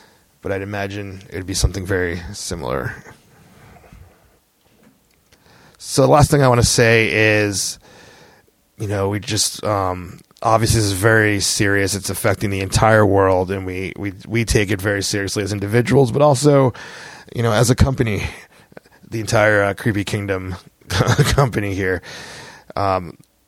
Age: 20-39